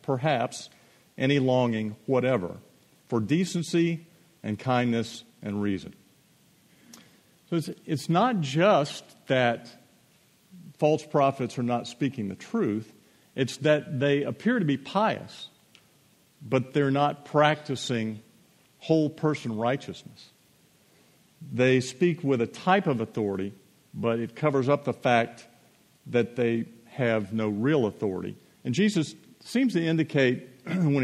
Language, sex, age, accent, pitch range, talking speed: English, male, 50-69, American, 115-150 Hz, 120 wpm